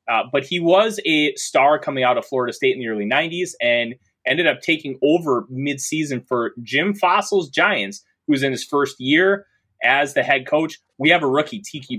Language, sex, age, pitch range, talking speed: English, male, 20-39, 135-195 Hz, 200 wpm